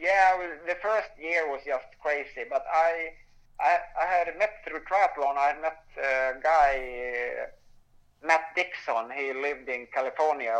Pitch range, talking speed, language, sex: 125-150 Hz, 140 wpm, Danish, male